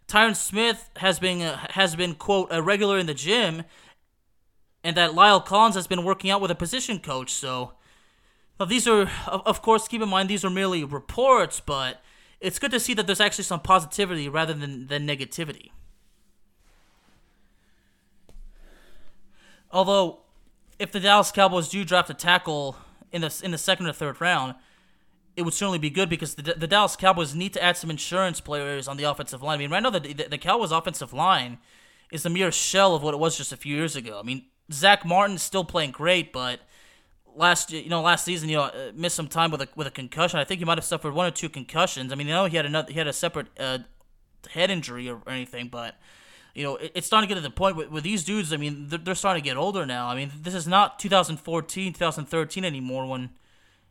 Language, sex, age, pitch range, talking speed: English, male, 20-39, 145-190 Hz, 220 wpm